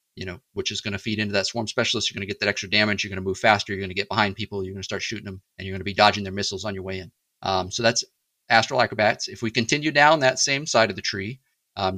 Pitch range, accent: 100-125 Hz, American